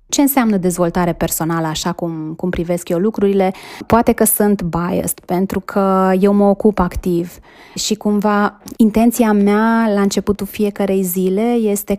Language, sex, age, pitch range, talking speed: Romanian, female, 20-39, 175-225 Hz, 145 wpm